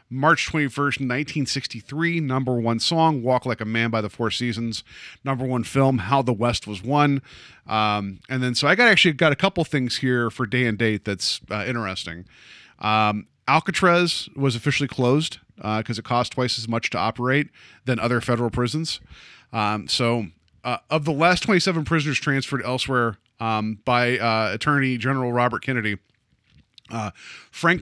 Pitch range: 115-140 Hz